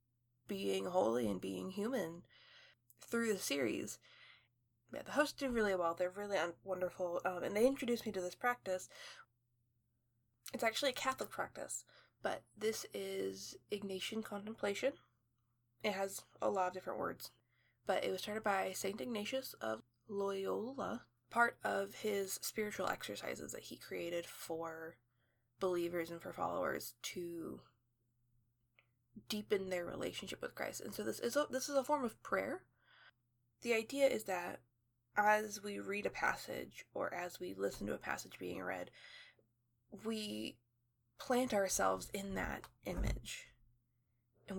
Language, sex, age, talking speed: English, female, 20-39, 140 wpm